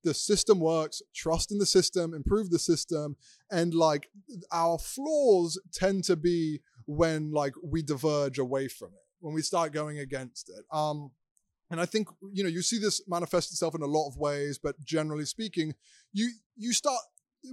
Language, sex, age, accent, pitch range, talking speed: English, male, 20-39, British, 150-190 Hz, 180 wpm